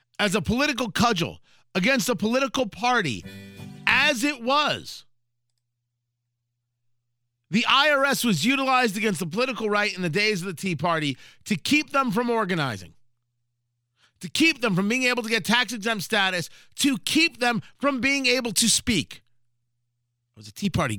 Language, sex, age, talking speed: English, male, 40-59, 155 wpm